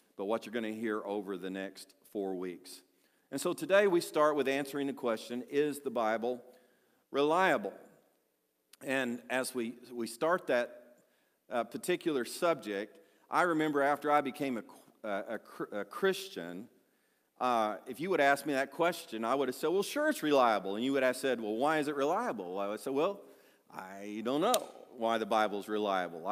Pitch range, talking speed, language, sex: 120-170 Hz, 180 wpm, English, male